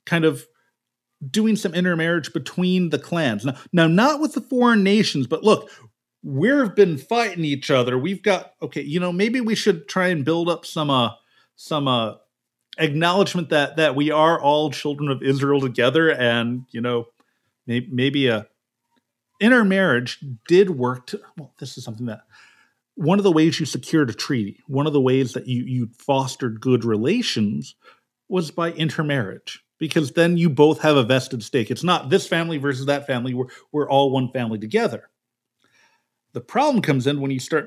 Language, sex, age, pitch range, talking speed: English, male, 40-59, 125-170 Hz, 180 wpm